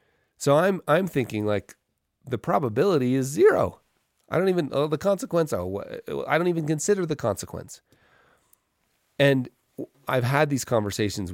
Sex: male